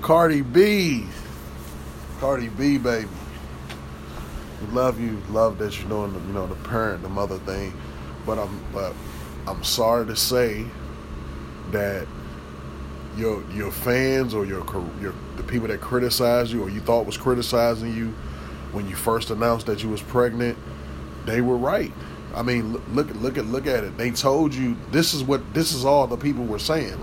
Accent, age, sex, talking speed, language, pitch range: American, 30-49, male, 170 wpm, English, 95-125 Hz